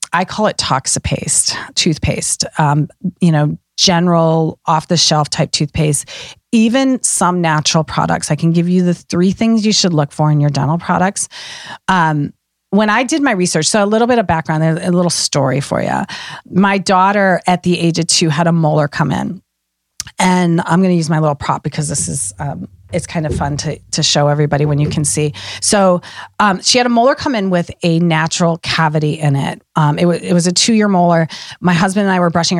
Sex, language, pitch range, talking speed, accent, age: female, English, 155-200 Hz, 210 wpm, American, 30-49